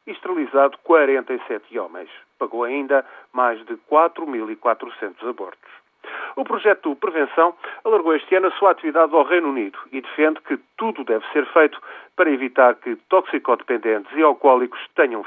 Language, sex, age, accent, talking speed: Portuguese, male, 40-59, Portuguese, 140 wpm